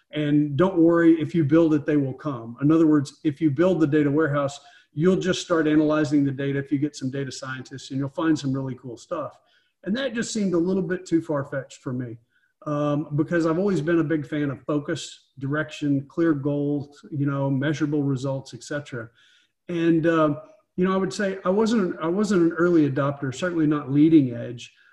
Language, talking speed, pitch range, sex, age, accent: English, 205 wpm, 135-165 Hz, male, 40-59, American